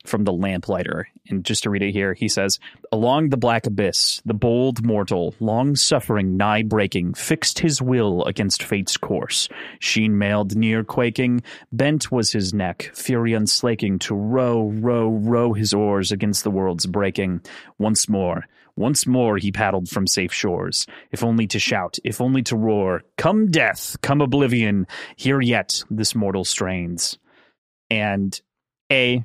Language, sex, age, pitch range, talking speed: English, male, 30-49, 105-130 Hz, 155 wpm